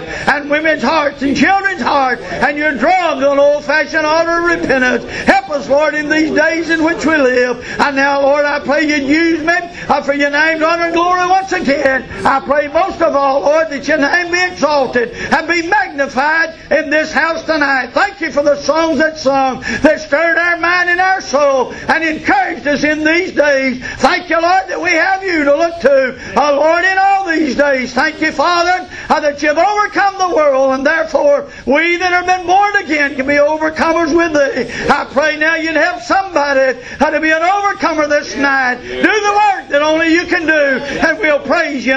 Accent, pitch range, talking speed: American, 275-330 Hz, 200 wpm